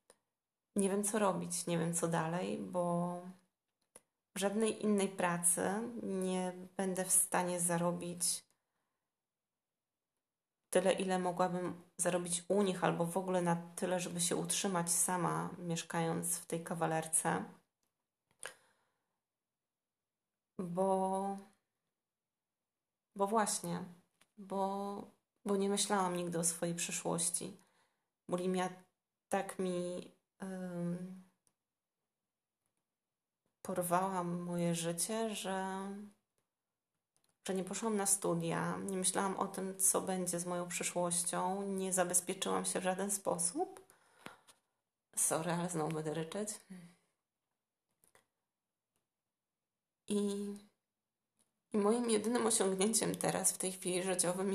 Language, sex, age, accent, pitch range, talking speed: Polish, female, 20-39, native, 175-195 Hz, 100 wpm